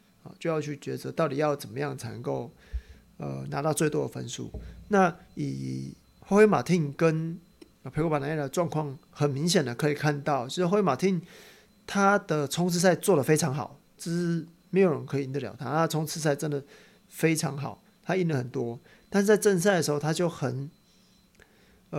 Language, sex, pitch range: Chinese, male, 140-180 Hz